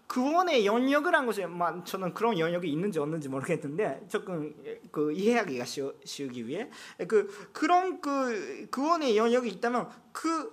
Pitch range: 170-275 Hz